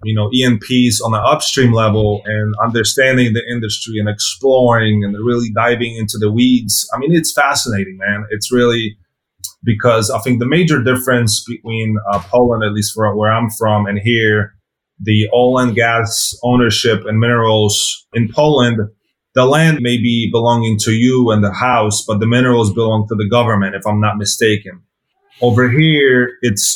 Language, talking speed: English, 170 wpm